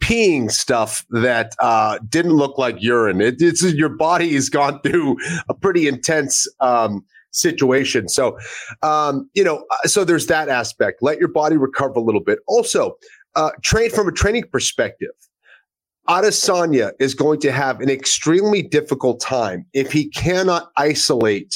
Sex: male